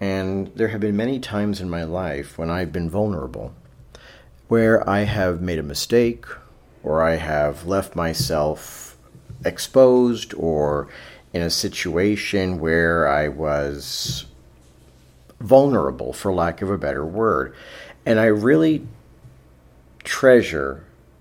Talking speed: 120 wpm